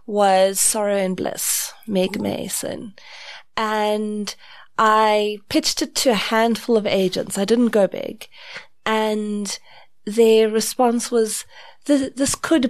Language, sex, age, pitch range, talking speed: English, female, 30-49, 205-250 Hz, 125 wpm